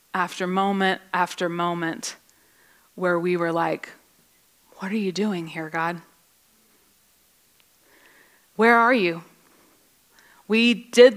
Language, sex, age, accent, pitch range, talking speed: English, female, 30-49, American, 195-245 Hz, 100 wpm